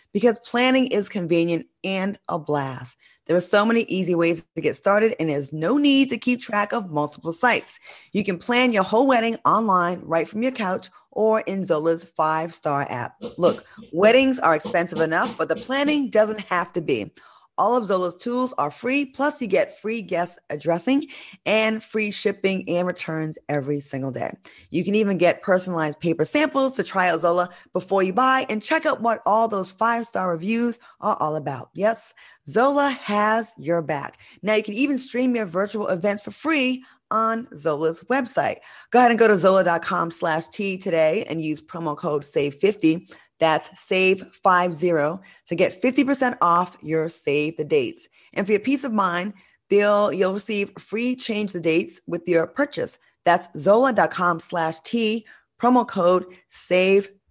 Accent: American